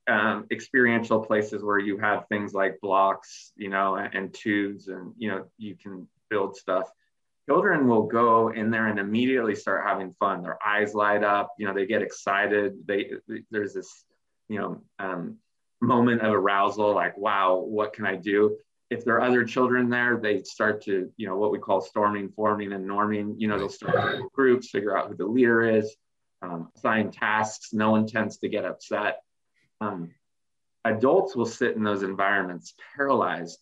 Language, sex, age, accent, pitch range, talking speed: English, male, 20-39, American, 105-115 Hz, 180 wpm